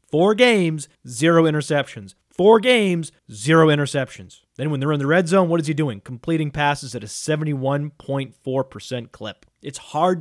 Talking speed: 160 wpm